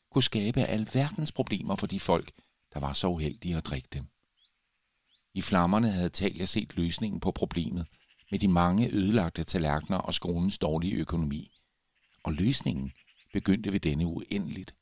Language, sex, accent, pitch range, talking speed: Danish, male, native, 80-110 Hz, 150 wpm